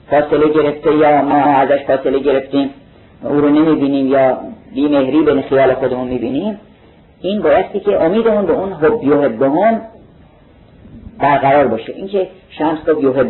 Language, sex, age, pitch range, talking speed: Persian, male, 50-69, 135-180 Hz, 140 wpm